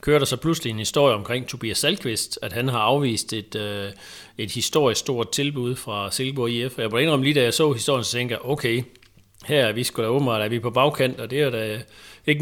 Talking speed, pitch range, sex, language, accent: 230 wpm, 105-130 Hz, male, Danish, native